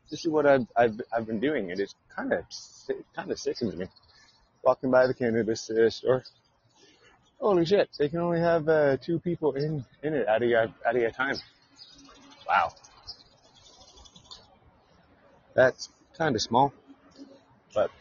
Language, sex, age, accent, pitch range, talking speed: English, male, 30-49, American, 110-150 Hz, 155 wpm